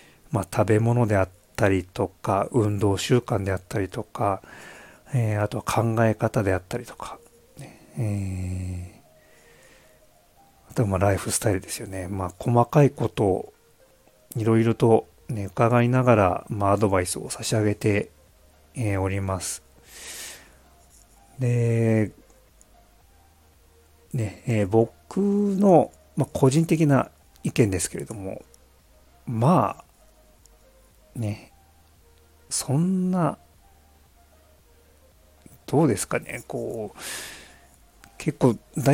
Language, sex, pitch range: Japanese, male, 80-120 Hz